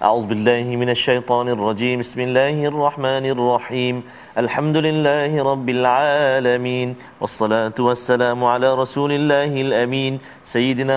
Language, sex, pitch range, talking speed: Malayalam, male, 125-150 Hz, 110 wpm